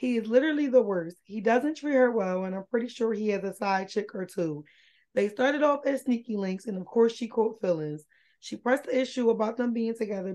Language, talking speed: English, 240 wpm